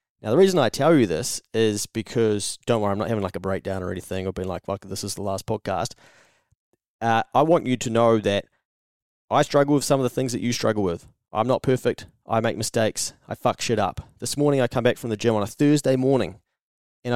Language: English